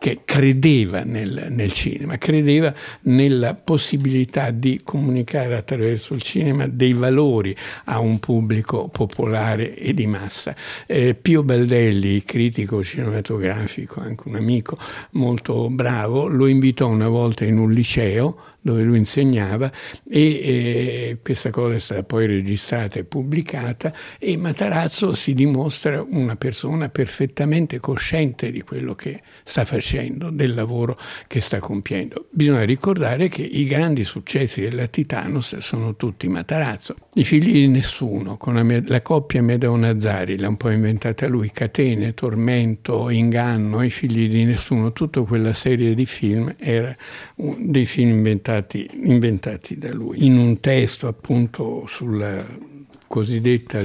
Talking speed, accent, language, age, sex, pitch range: 135 wpm, native, Italian, 60-79, male, 110-135 Hz